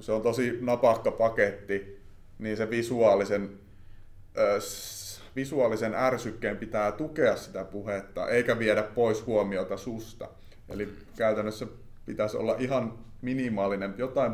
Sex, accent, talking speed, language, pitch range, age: male, native, 115 wpm, Finnish, 100-115 Hz, 30-49